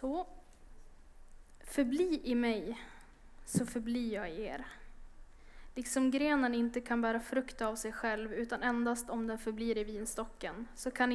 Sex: female